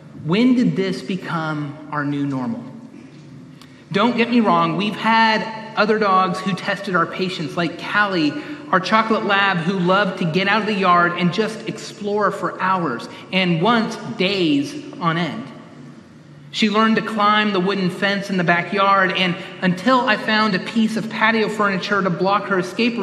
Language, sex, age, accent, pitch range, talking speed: English, male, 30-49, American, 170-215 Hz, 170 wpm